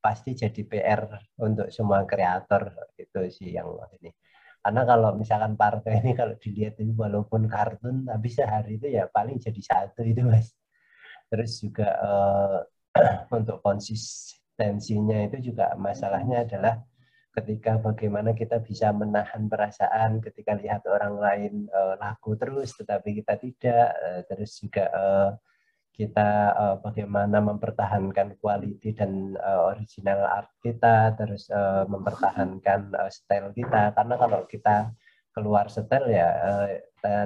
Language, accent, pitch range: Indonesian, native, 100-115 Hz